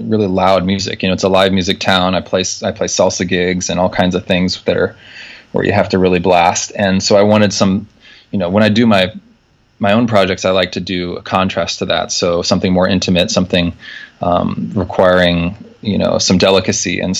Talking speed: 220 wpm